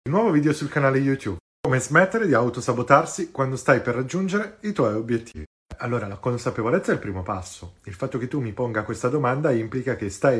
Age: 30-49